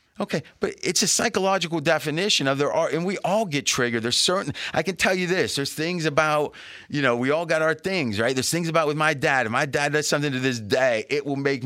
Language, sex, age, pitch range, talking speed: English, male, 30-49, 135-180 Hz, 250 wpm